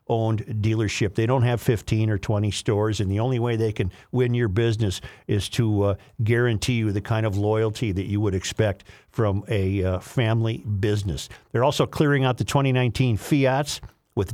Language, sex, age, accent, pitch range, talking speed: English, male, 50-69, American, 100-125 Hz, 185 wpm